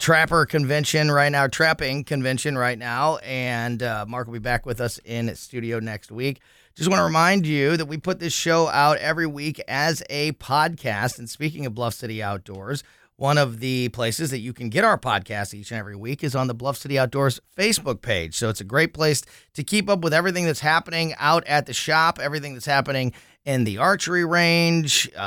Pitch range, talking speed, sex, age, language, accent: 115-155 Hz, 205 wpm, male, 30-49, English, American